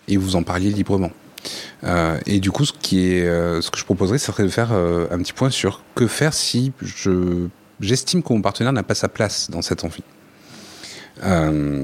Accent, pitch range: French, 90-105 Hz